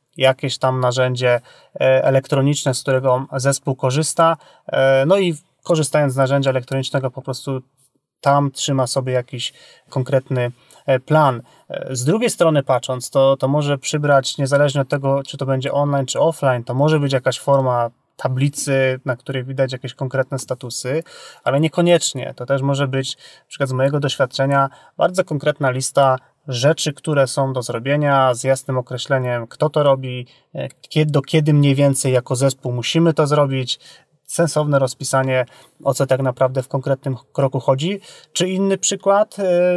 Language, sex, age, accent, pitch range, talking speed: Polish, male, 30-49, native, 130-155 Hz, 150 wpm